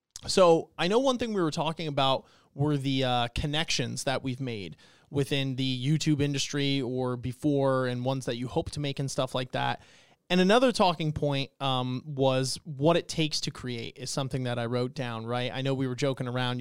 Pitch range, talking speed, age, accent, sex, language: 130-160 Hz, 205 wpm, 30-49, American, male, English